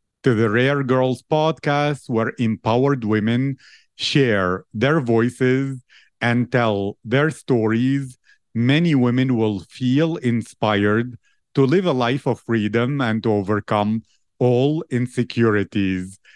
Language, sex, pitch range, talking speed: English, male, 110-135 Hz, 115 wpm